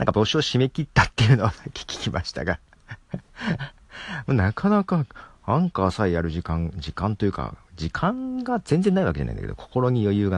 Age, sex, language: 40-59, male, Japanese